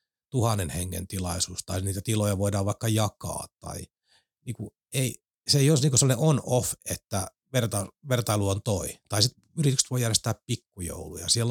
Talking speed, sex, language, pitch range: 155 wpm, male, Finnish, 95-115 Hz